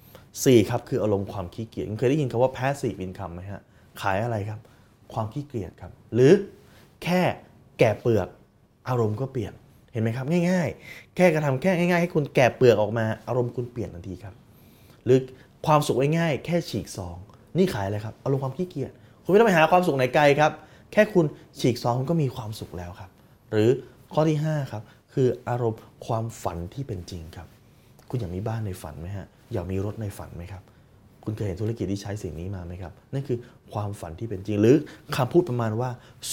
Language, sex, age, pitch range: Thai, male, 20-39, 100-135 Hz